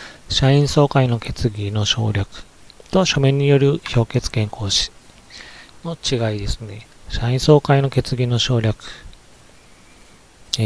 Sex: male